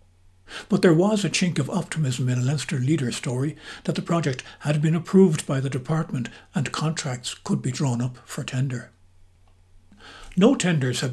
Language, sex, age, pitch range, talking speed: English, male, 60-79, 125-170 Hz, 175 wpm